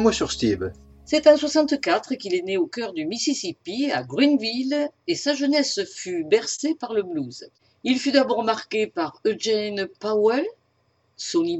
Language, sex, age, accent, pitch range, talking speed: French, female, 50-69, French, 190-300 Hz, 145 wpm